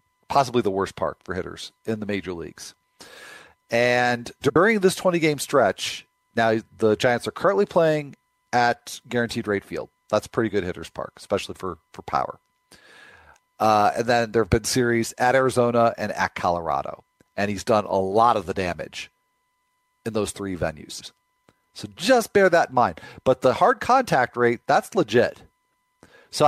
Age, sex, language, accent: 40-59, male, English, American